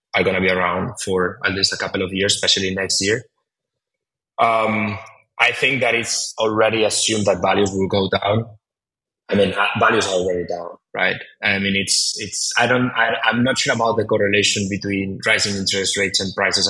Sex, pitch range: male, 95-110 Hz